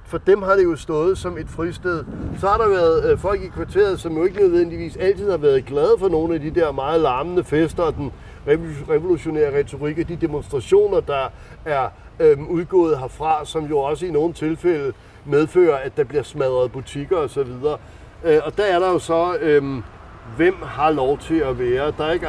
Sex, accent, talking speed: male, native, 200 wpm